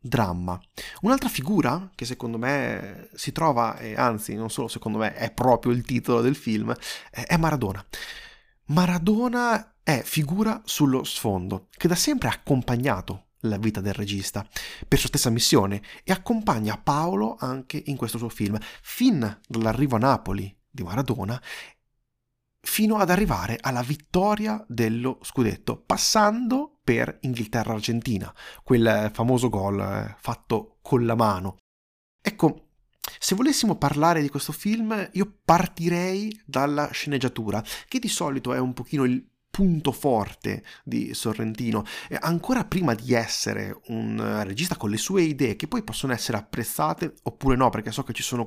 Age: 30-49